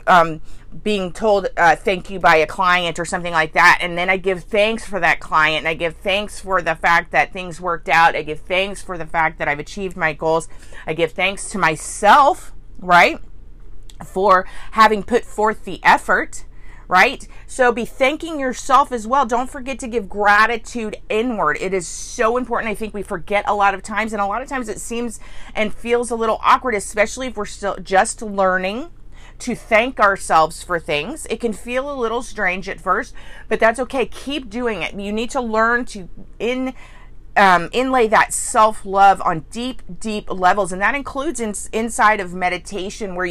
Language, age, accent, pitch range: English, 30-49, American, 185-235 Hz